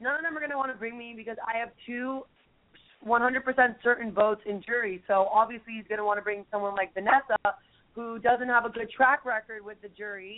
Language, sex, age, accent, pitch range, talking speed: English, female, 20-39, American, 210-245 Hz, 230 wpm